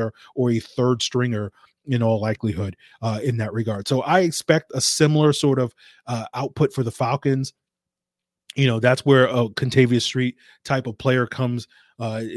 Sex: male